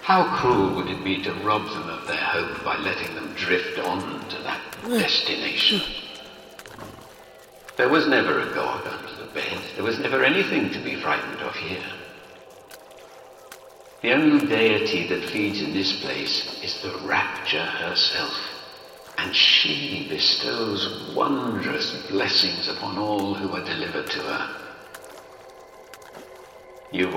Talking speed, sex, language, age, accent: 135 wpm, male, English, 60-79, British